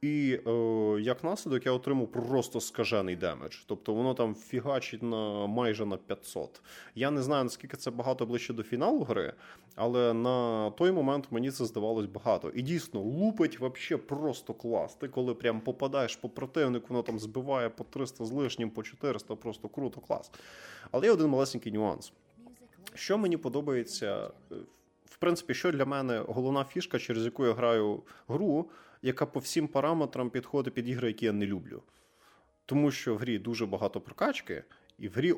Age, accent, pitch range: 20-39, native, 115-135 Hz